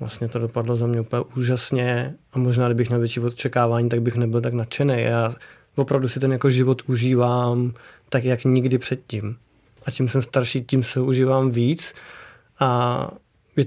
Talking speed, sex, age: 170 wpm, male, 20-39